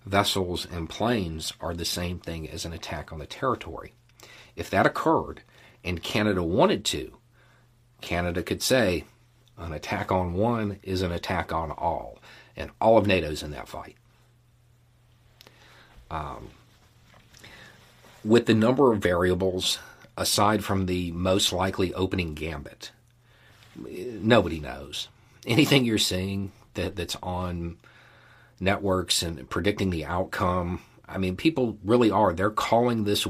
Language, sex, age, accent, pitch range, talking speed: English, male, 40-59, American, 90-115 Hz, 130 wpm